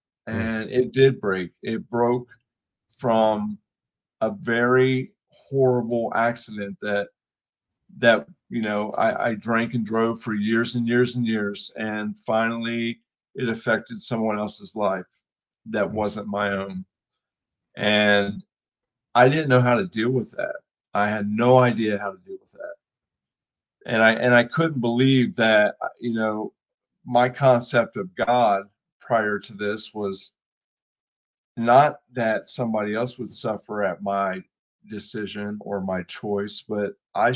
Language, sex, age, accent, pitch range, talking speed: English, male, 50-69, American, 105-120 Hz, 140 wpm